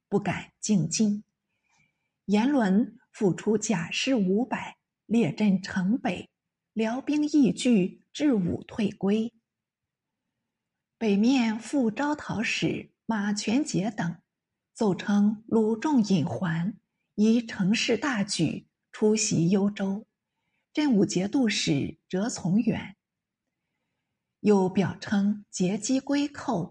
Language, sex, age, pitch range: Chinese, female, 50-69, 190-240 Hz